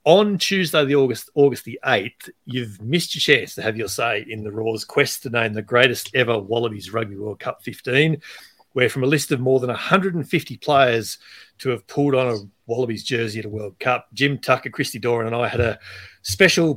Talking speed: 205 wpm